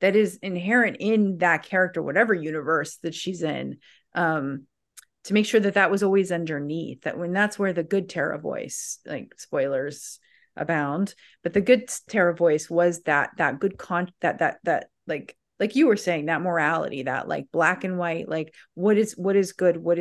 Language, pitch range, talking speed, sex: English, 160-200 Hz, 190 wpm, female